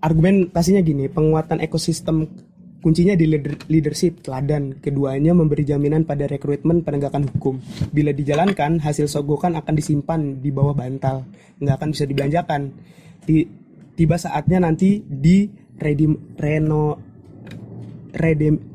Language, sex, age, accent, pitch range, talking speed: Indonesian, male, 20-39, native, 145-165 Hz, 115 wpm